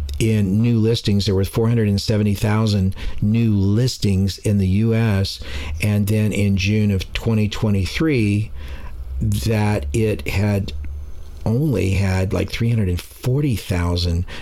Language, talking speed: English, 100 wpm